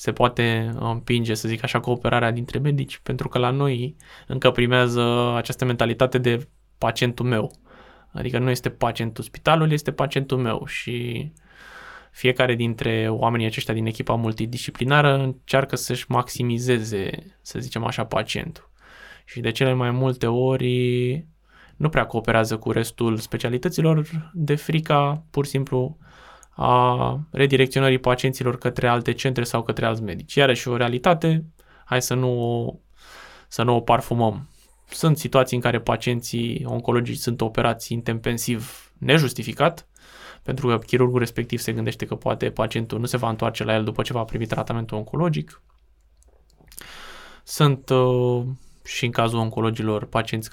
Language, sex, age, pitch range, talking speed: Romanian, male, 20-39, 115-130 Hz, 140 wpm